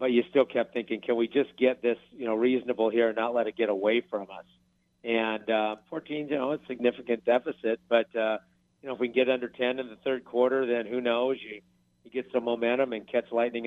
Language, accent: English, American